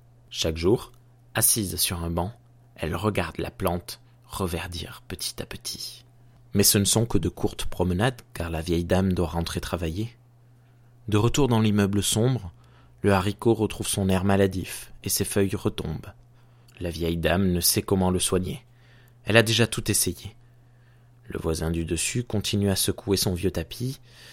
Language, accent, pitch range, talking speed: French, French, 90-120 Hz, 165 wpm